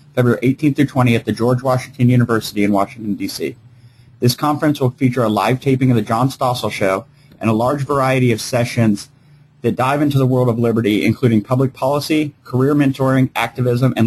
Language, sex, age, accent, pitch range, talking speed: English, male, 30-49, American, 110-135 Hz, 190 wpm